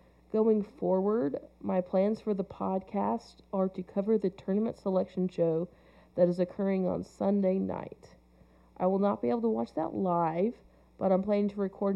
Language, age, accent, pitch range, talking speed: English, 40-59, American, 175-200 Hz, 170 wpm